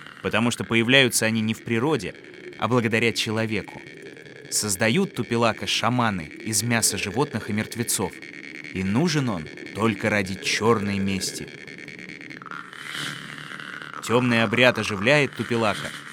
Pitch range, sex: 100-145 Hz, male